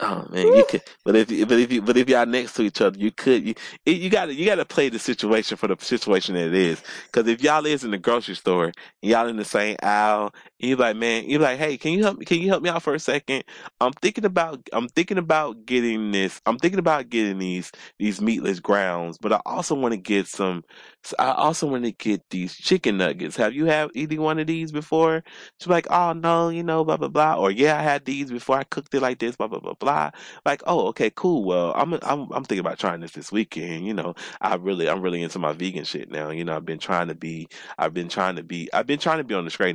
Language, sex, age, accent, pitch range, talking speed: English, male, 20-39, American, 100-155 Hz, 265 wpm